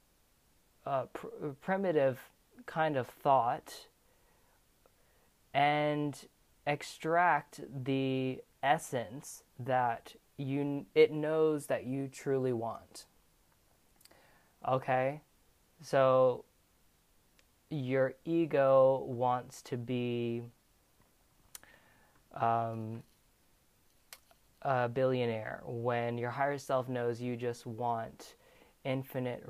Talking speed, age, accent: 75 wpm, 20-39, American